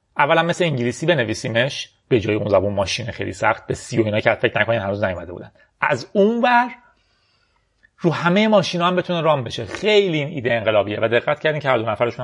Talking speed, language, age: 205 wpm, Persian, 30-49